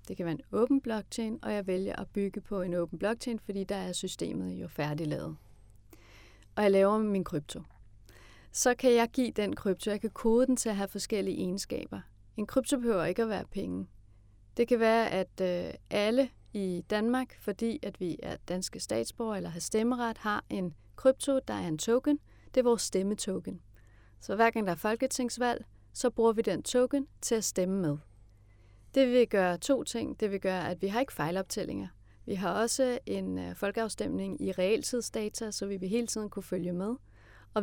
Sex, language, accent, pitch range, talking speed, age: female, Danish, native, 145-230 Hz, 190 wpm, 30-49